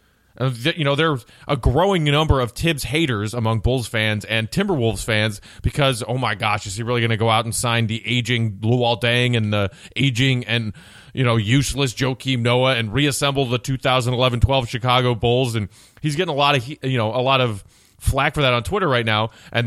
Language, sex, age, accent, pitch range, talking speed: English, male, 30-49, American, 115-145 Hz, 200 wpm